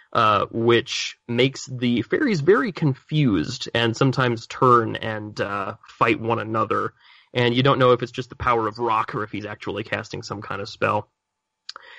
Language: English